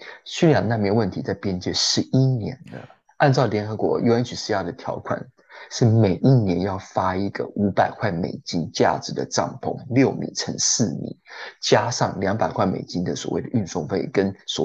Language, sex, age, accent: Chinese, male, 30-49, native